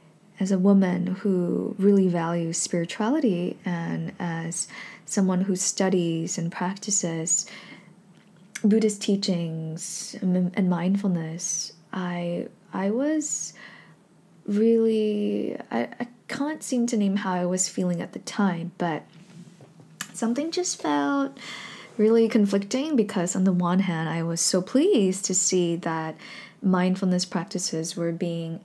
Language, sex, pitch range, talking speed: English, female, 175-210 Hz, 120 wpm